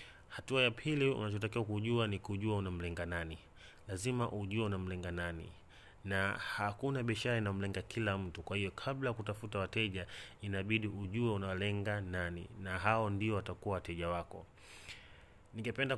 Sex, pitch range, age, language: male, 95-110 Hz, 30-49, Swahili